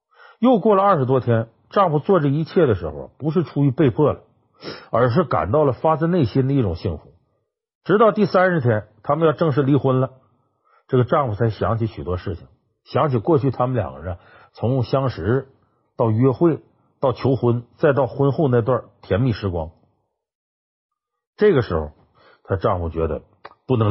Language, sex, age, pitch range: Chinese, male, 50-69, 105-150 Hz